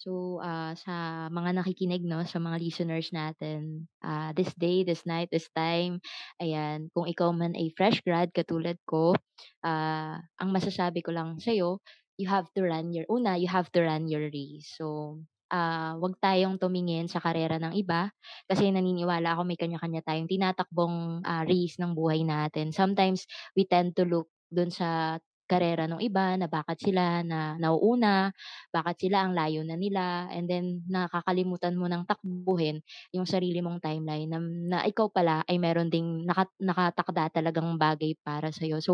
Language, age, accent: Filipino, 20-39, native